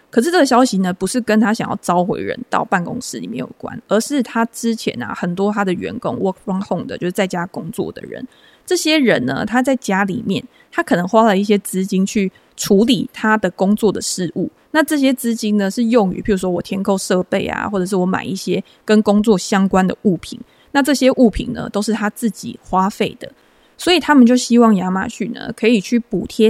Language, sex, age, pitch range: Chinese, female, 20-39, 195-240 Hz